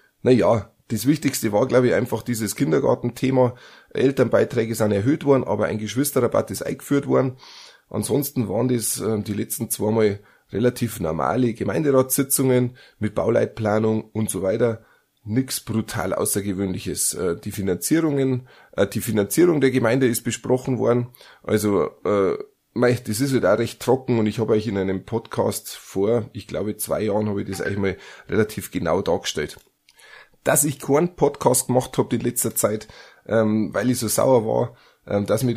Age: 30-49